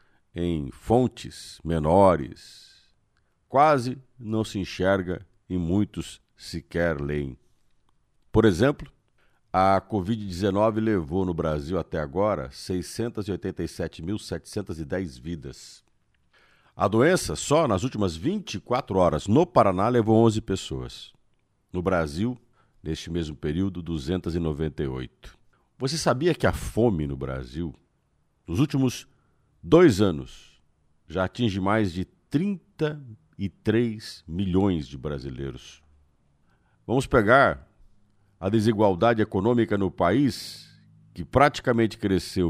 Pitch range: 85-115 Hz